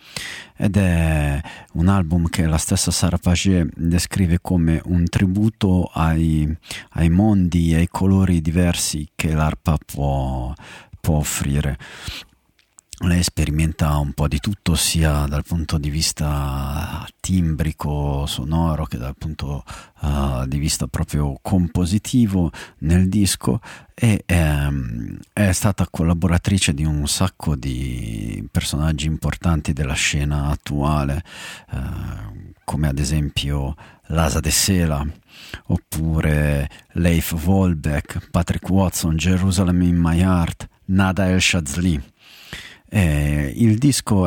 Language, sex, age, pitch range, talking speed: Italian, male, 50-69, 75-95 Hz, 115 wpm